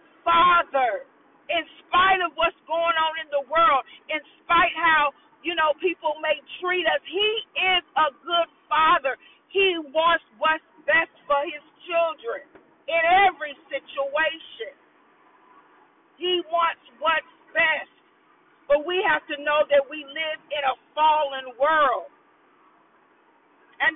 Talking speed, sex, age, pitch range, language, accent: 130 wpm, female, 40-59, 285-330 Hz, English, American